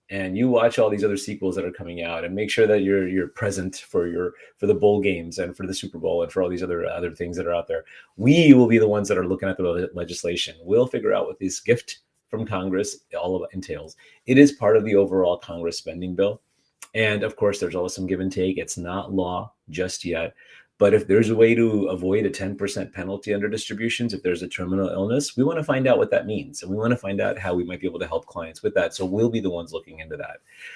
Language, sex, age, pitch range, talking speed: English, male, 30-49, 95-115 Hz, 265 wpm